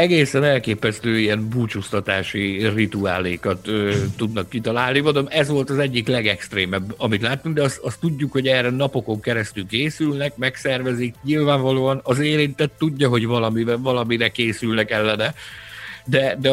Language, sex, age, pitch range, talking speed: Hungarian, male, 60-79, 105-135 Hz, 135 wpm